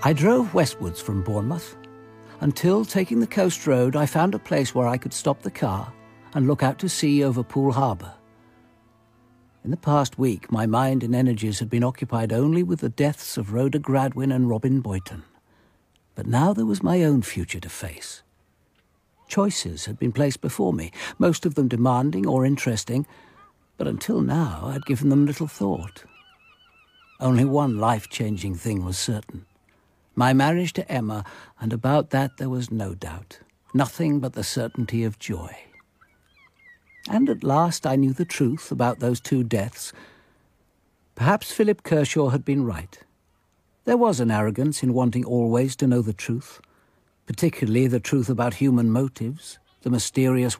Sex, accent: male, British